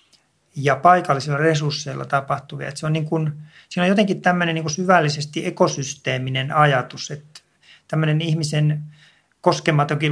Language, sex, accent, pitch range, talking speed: Finnish, male, native, 145-170 Hz, 120 wpm